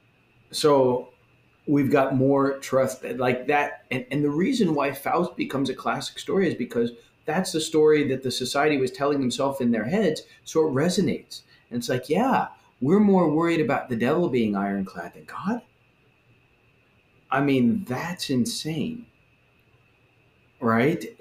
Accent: American